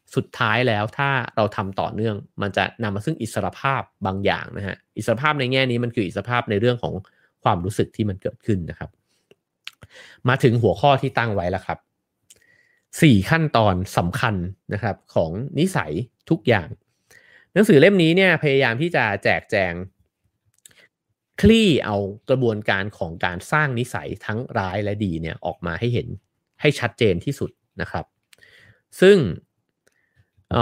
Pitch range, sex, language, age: 100-135 Hz, male, English, 30-49